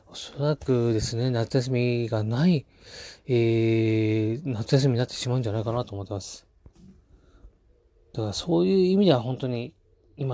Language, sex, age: Japanese, male, 20-39